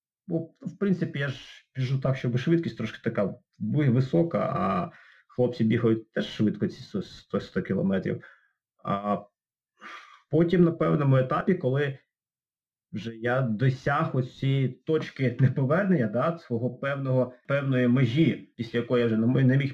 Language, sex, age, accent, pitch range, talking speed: Ukrainian, male, 20-39, native, 115-150 Hz, 130 wpm